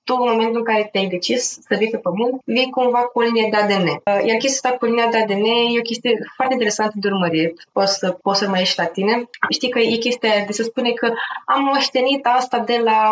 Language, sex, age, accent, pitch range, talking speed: Romanian, female, 20-39, native, 190-240 Hz, 235 wpm